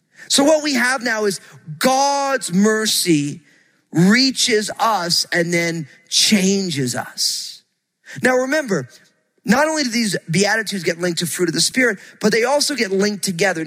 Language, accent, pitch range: English, American, 180-255 Hz